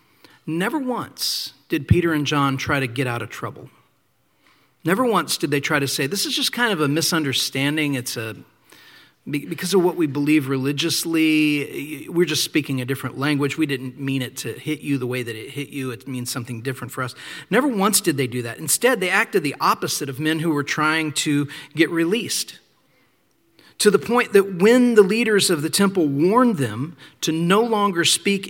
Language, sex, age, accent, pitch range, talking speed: English, male, 40-59, American, 140-190 Hz, 200 wpm